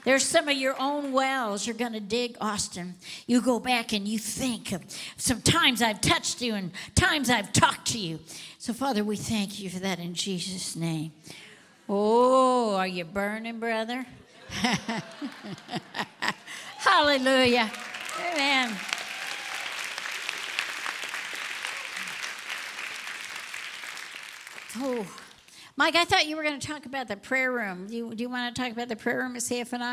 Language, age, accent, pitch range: English, 60-79, American, 215-265 Hz